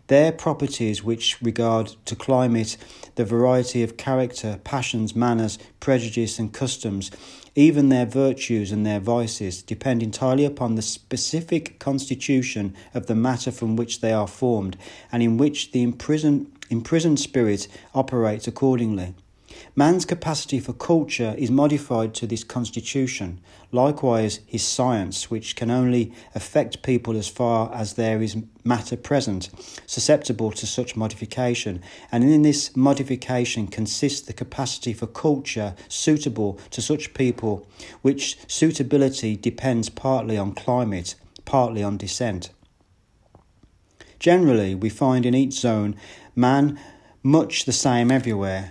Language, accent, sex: English, British, male